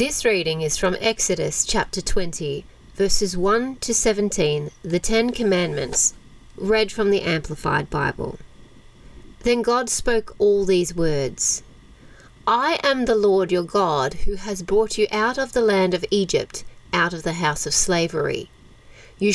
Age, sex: 30-49, female